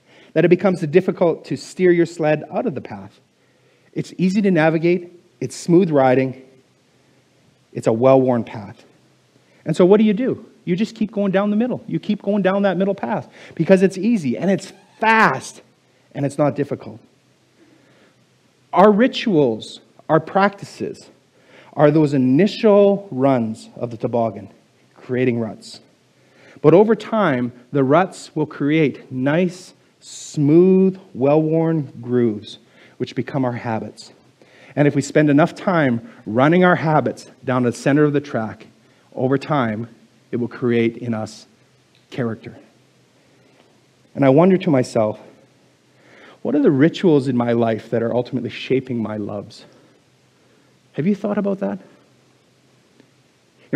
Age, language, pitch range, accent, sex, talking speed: 30-49, English, 120-180 Hz, American, male, 145 wpm